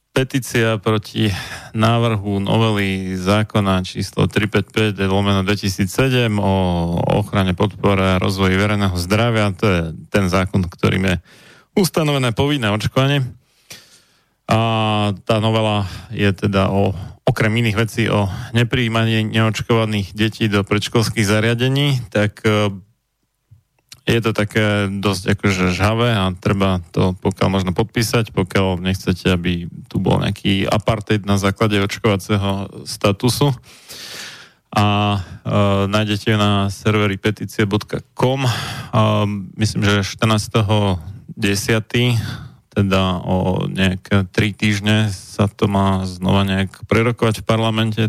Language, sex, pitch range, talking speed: Slovak, male, 100-115 Hz, 105 wpm